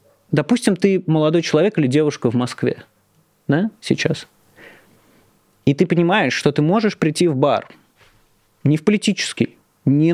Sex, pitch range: male, 140-185 Hz